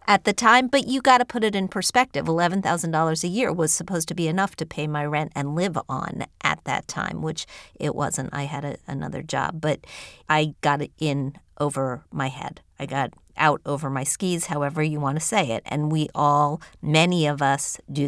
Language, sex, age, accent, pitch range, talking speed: English, female, 50-69, American, 140-165 Hz, 210 wpm